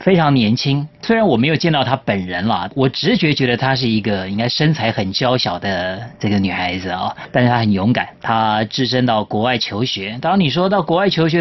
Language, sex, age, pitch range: Chinese, male, 30-49, 110-155 Hz